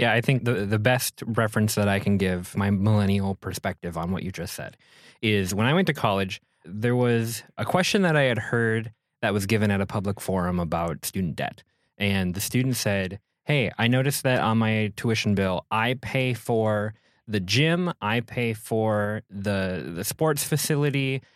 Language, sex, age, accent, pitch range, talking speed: English, male, 20-39, American, 105-130 Hz, 190 wpm